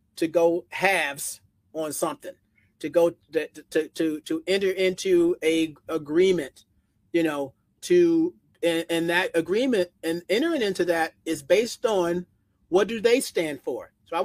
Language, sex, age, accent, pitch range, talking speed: English, male, 40-59, American, 170-225 Hz, 150 wpm